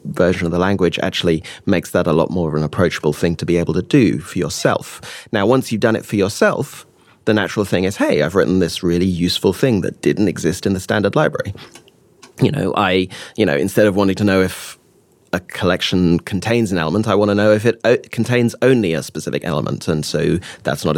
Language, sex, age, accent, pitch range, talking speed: English, male, 30-49, British, 85-110 Hz, 220 wpm